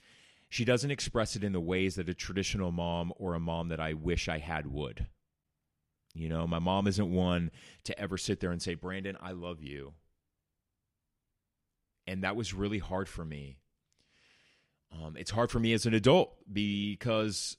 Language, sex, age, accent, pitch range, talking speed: English, male, 30-49, American, 85-110 Hz, 175 wpm